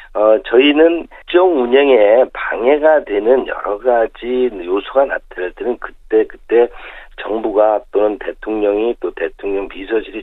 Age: 50-69